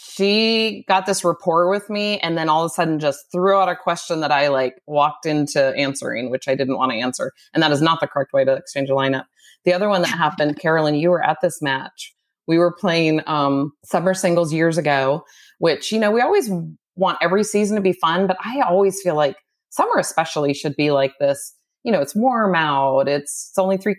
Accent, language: American, English